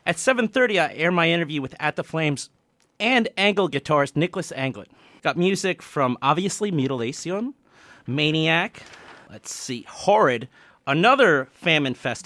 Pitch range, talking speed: 140-190 Hz, 130 wpm